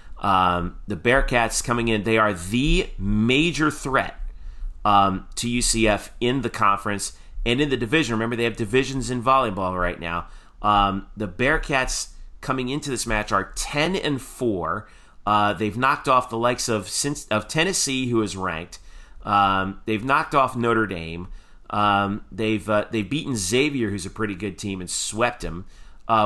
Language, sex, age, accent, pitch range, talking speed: English, male, 30-49, American, 95-120 Hz, 165 wpm